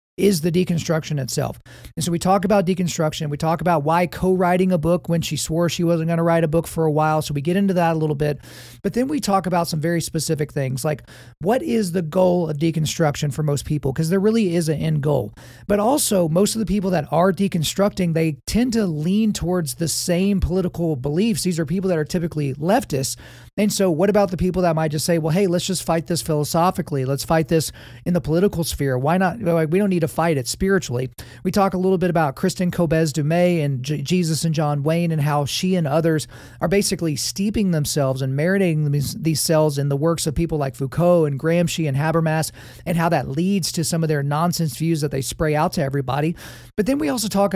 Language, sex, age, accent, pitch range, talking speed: English, male, 40-59, American, 150-185 Hz, 230 wpm